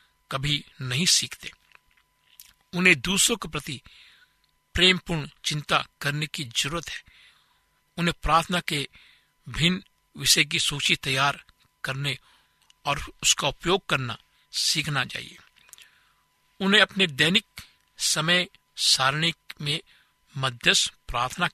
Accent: native